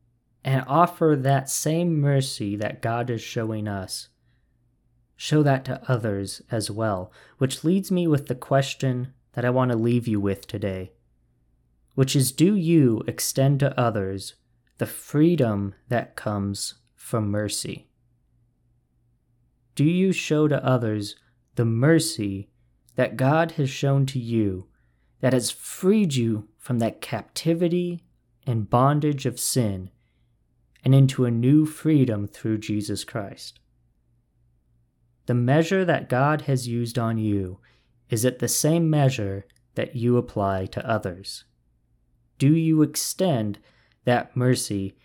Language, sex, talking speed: English, male, 130 wpm